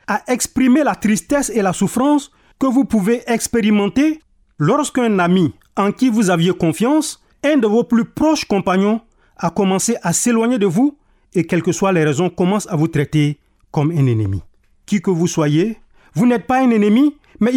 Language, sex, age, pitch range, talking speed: French, male, 40-59, 165-255 Hz, 180 wpm